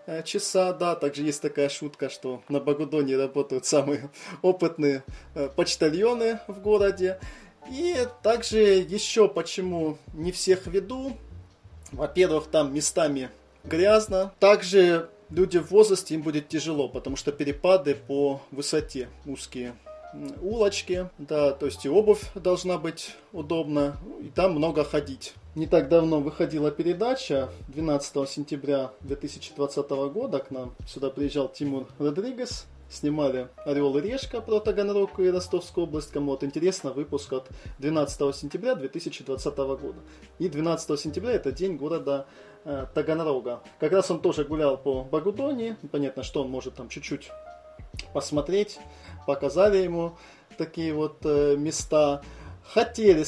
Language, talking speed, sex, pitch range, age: Russian, 130 wpm, male, 140-185 Hz, 20-39